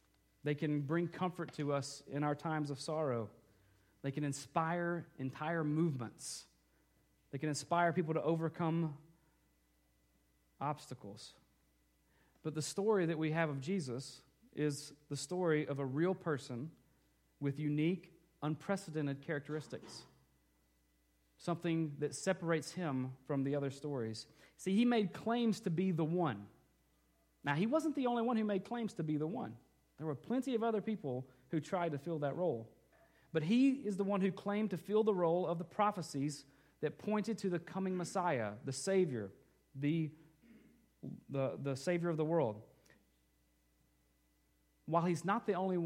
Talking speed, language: 150 wpm, English